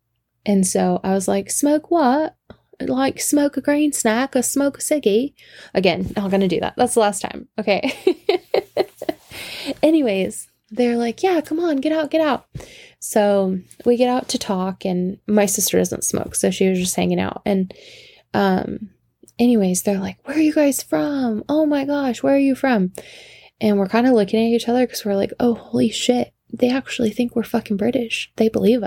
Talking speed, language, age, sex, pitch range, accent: 195 wpm, English, 10-29, female, 190-255 Hz, American